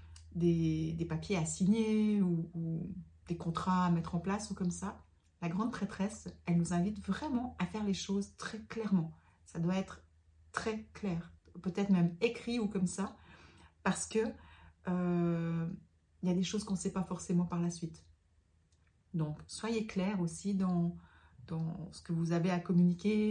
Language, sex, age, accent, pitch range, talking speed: French, female, 40-59, French, 165-205 Hz, 170 wpm